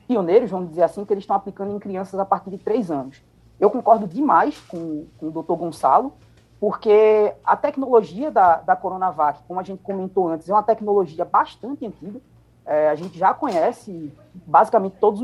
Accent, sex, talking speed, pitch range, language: Brazilian, female, 180 wpm, 170-230 Hz, Portuguese